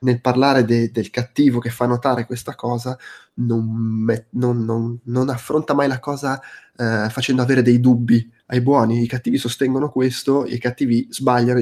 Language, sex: Italian, male